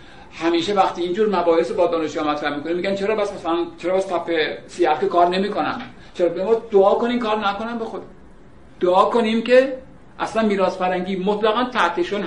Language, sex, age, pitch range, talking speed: Persian, male, 60-79, 175-225 Hz, 165 wpm